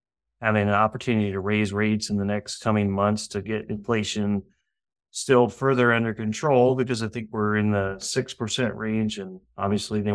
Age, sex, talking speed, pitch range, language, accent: 30-49, male, 170 wpm, 100-115 Hz, English, American